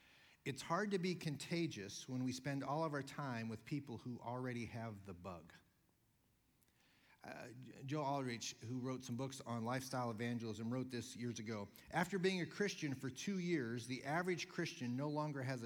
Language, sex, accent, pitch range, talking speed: English, male, American, 120-155 Hz, 175 wpm